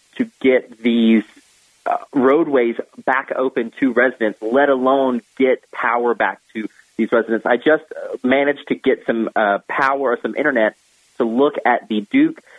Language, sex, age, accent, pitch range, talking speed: English, male, 30-49, American, 115-140 Hz, 155 wpm